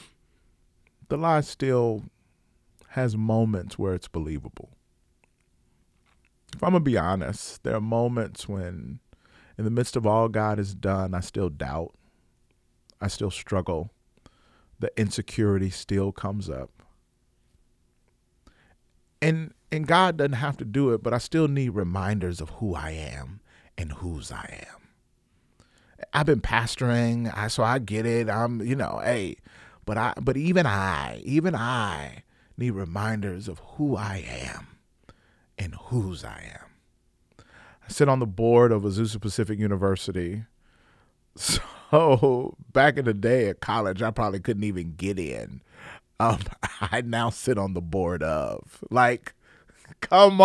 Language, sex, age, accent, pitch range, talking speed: English, male, 40-59, American, 95-130 Hz, 140 wpm